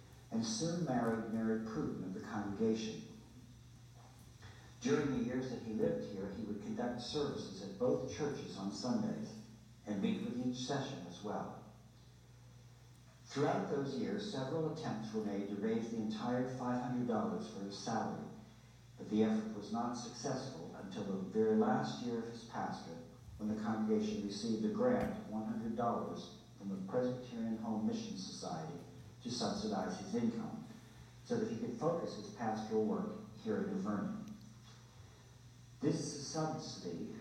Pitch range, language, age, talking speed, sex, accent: 110-130 Hz, English, 60-79, 145 wpm, male, American